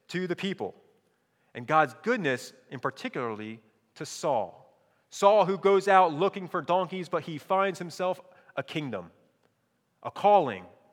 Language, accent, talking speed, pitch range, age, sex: English, American, 135 wpm, 165-225 Hz, 30-49, male